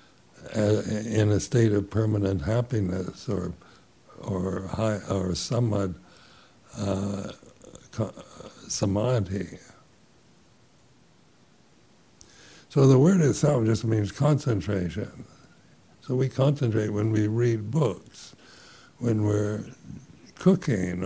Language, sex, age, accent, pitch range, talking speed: English, male, 60-79, American, 100-120 Hz, 90 wpm